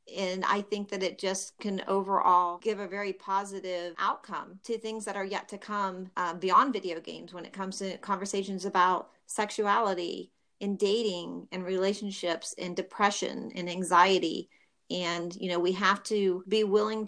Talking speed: 165 wpm